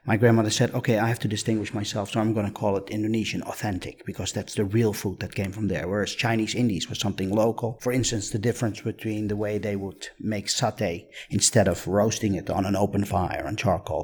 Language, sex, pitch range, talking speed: English, male, 100-120 Hz, 225 wpm